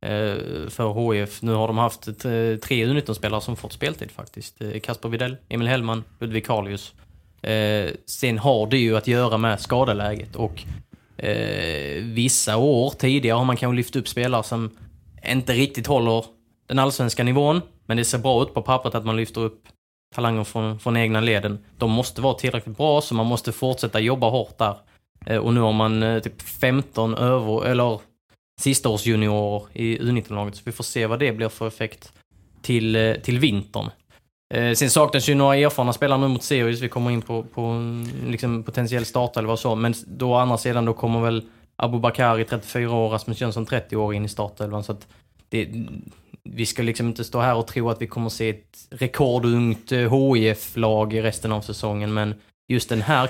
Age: 20-39